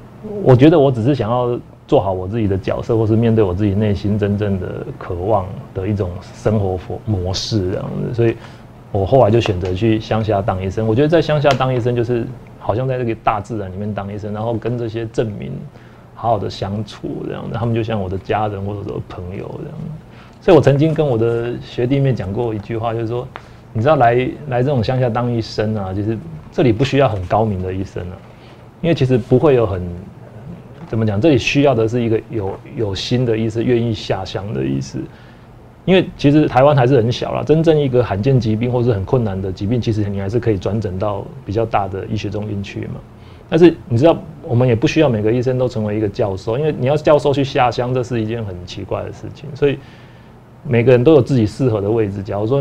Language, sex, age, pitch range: Chinese, male, 30-49, 105-125 Hz